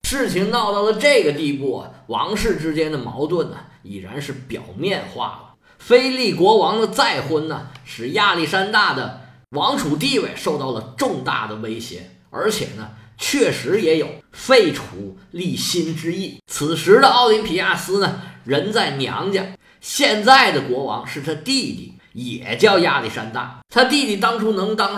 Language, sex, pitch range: Chinese, male, 145-215 Hz